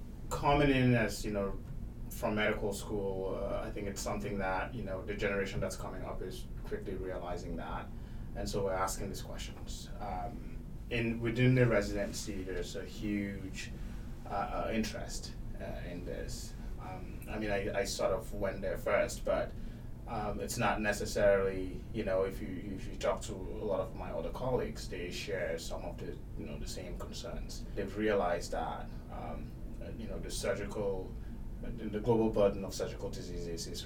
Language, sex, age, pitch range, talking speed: English, male, 20-39, 95-115 Hz, 175 wpm